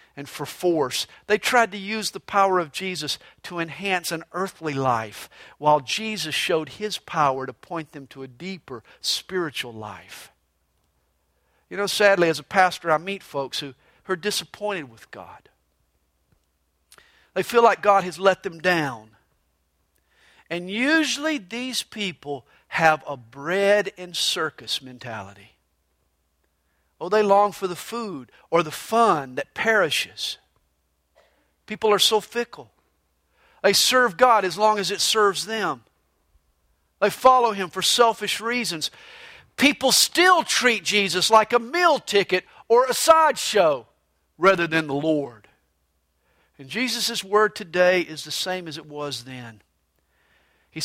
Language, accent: English, American